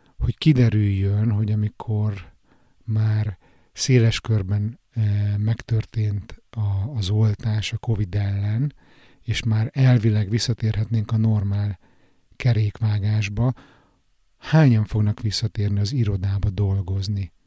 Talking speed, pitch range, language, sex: 90 wpm, 105-115 Hz, Hungarian, male